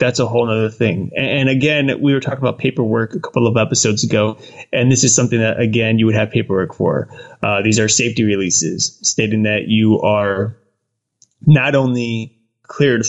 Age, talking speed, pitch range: 20-39, 185 wpm, 110-130 Hz